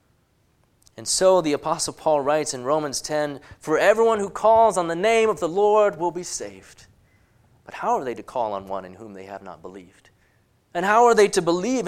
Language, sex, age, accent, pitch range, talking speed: English, male, 30-49, American, 125-205 Hz, 210 wpm